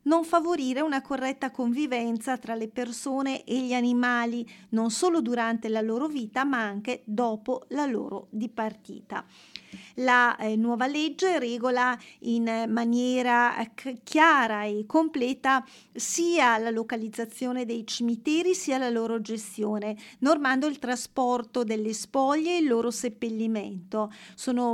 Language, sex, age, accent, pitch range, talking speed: Italian, female, 40-59, native, 225-255 Hz, 130 wpm